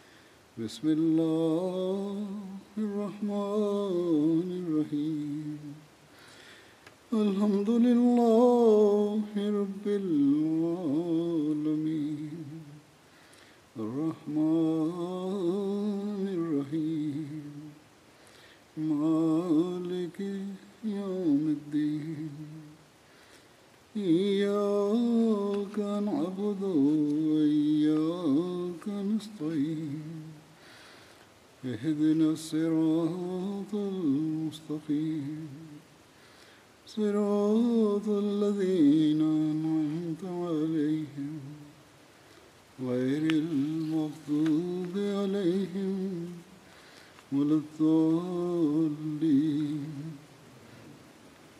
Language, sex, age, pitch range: Tamil, male, 60-79, 150-200 Hz